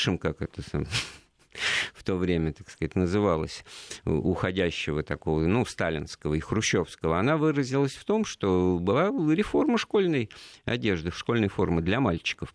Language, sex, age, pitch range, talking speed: Russian, male, 50-69, 85-125 Hz, 130 wpm